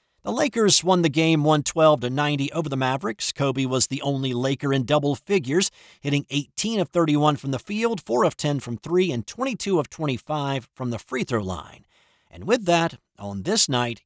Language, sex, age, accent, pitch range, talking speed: English, male, 50-69, American, 125-185 Hz, 195 wpm